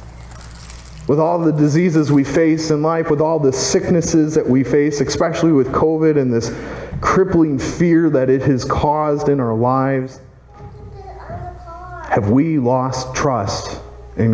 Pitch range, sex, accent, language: 100-145 Hz, male, American, English